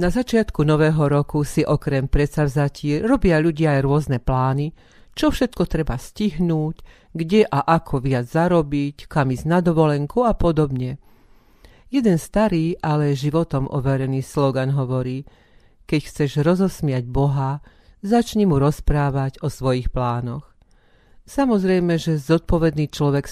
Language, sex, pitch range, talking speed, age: Slovak, female, 135-170 Hz, 125 wpm, 40-59